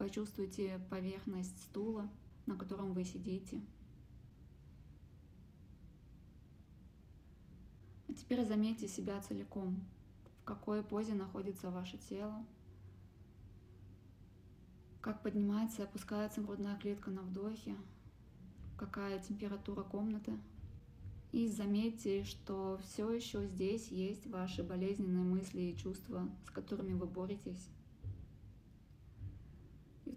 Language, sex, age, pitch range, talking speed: Russian, female, 20-39, 130-210 Hz, 90 wpm